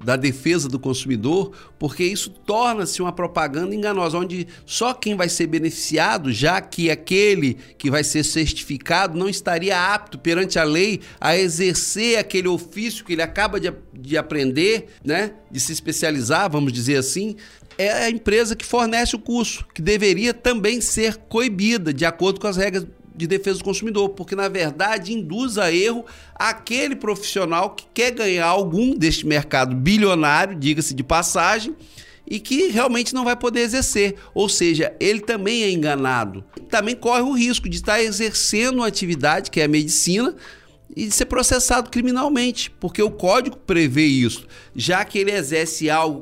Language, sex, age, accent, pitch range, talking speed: Portuguese, male, 50-69, Brazilian, 155-220 Hz, 165 wpm